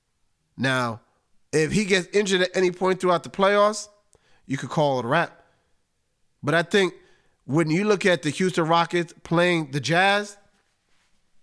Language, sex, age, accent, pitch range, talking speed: English, male, 30-49, American, 150-200 Hz, 160 wpm